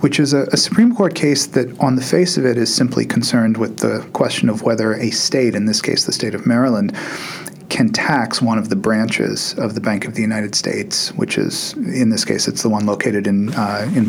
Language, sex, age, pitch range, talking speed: English, male, 40-59, 110-180 Hz, 235 wpm